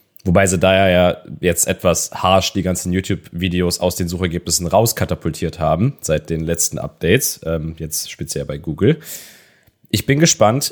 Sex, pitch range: male, 95-120 Hz